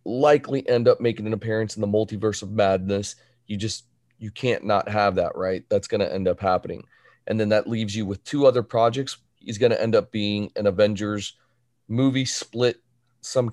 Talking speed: 200 wpm